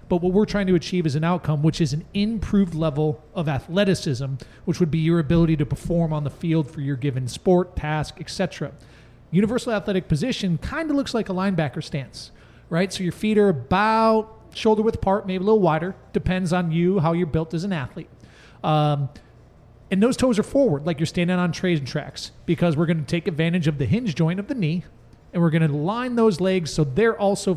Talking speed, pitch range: 215 wpm, 150-190 Hz